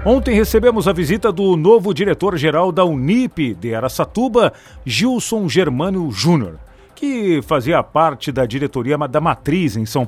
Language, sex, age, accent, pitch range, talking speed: Portuguese, male, 50-69, Brazilian, 135-210 Hz, 135 wpm